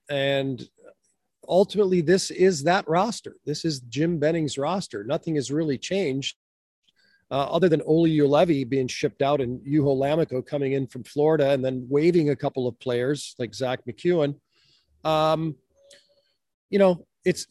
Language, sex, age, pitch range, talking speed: English, male, 40-59, 145-190 Hz, 150 wpm